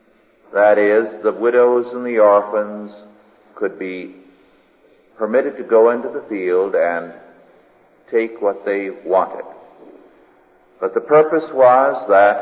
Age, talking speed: 50-69, 120 wpm